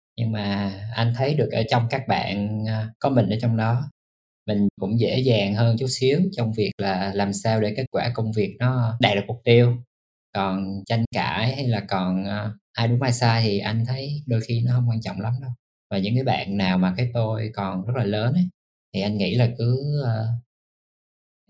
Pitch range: 105-125 Hz